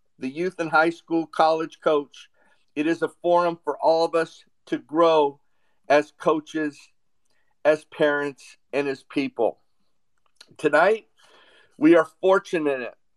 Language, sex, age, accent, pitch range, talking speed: English, male, 50-69, American, 155-185 Hz, 130 wpm